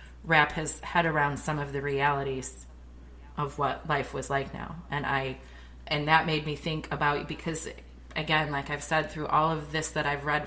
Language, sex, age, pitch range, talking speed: English, female, 30-49, 125-150 Hz, 195 wpm